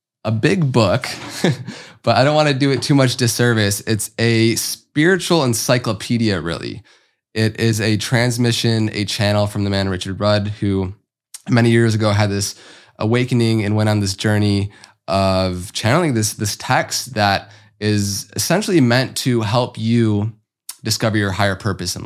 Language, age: English, 20-39